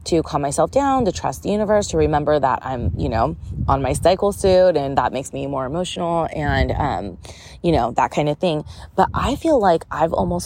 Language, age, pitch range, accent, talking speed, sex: English, 20-39, 155-200 Hz, American, 220 wpm, female